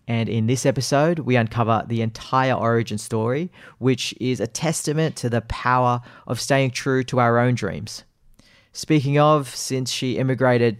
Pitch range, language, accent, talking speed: 115-130 Hz, English, Australian, 160 wpm